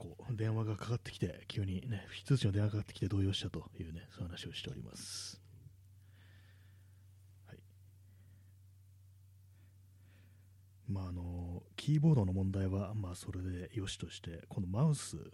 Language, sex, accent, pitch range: Japanese, male, native, 95-110 Hz